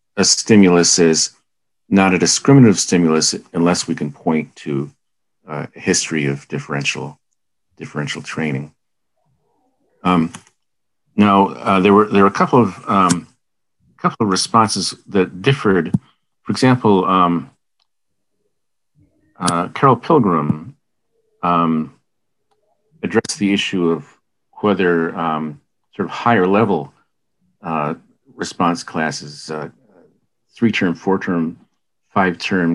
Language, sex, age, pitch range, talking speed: English, male, 50-69, 80-100 Hz, 110 wpm